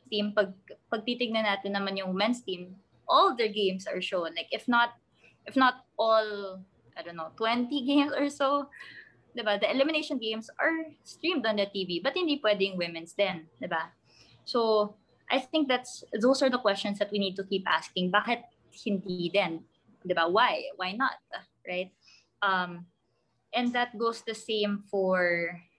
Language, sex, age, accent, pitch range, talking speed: English, female, 20-39, Filipino, 185-235 Hz, 150 wpm